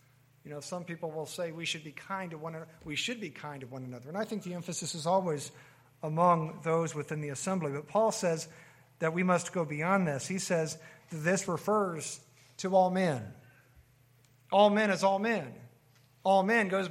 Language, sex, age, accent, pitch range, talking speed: English, male, 50-69, American, 140-185 Hz, 200 wpm